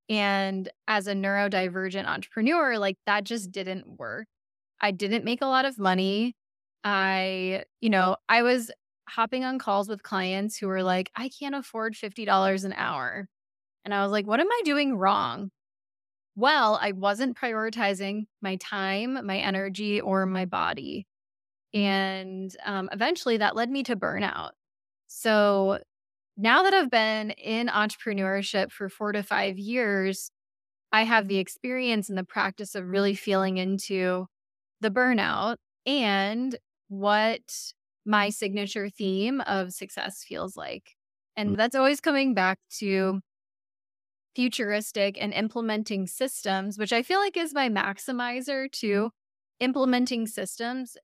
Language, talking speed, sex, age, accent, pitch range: English, 140 wpm, female, 20-39, American, 190-235 Hz